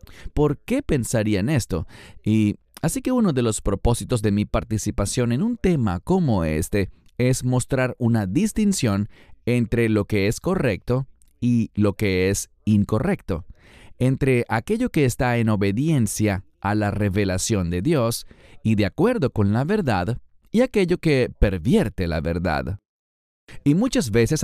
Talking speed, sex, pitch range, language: 145 wpm, male, 100-145 Hz, English